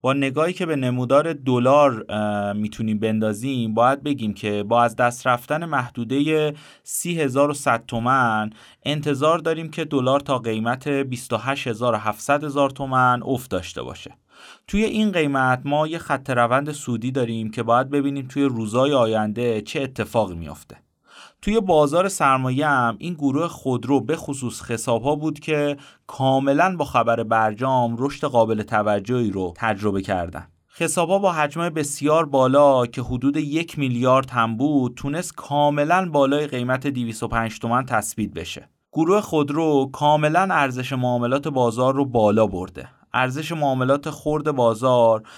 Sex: male